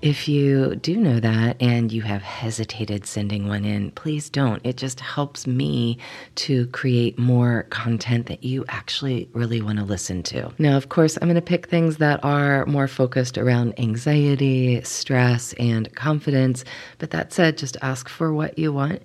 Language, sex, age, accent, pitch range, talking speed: English, female, 40-59, American, 120-145 Hz, 175 wpm